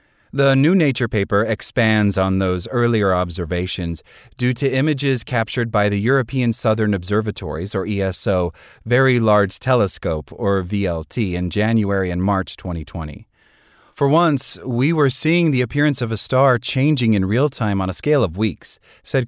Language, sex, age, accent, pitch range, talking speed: English, male, 30-49, American, 95-125 Hz, 155 wpm